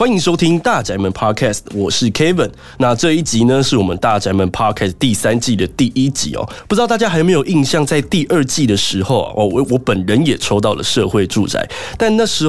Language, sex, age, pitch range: Chinese, male, 20-39, 105-165 Hz